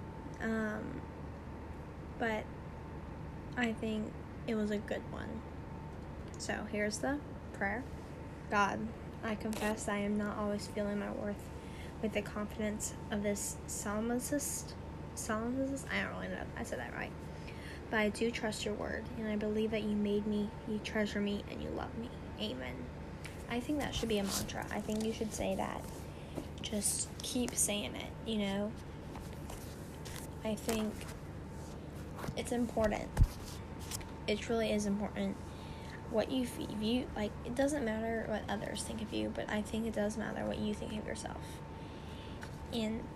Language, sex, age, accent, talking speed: English, female, 10-29, American, 155 wpm